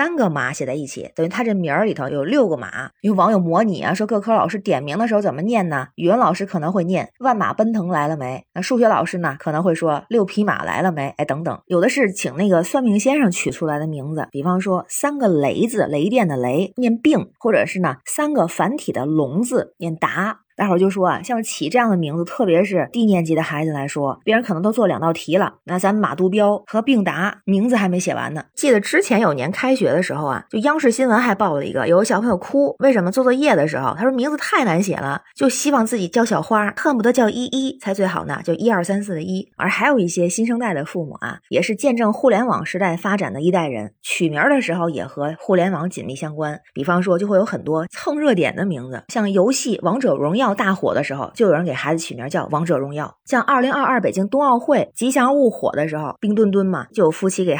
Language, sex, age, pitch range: Chinese, female, 20-39, 170-230 Hz